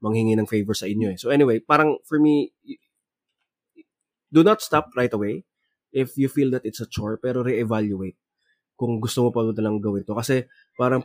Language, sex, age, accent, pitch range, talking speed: Filipino, male, 20-39, native, 110-130 Hz, 190 wpm